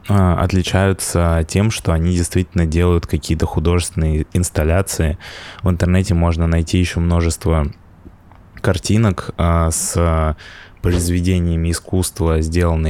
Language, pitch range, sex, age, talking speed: Russian, 85-95 Hz, male, 20-39, 95 wpm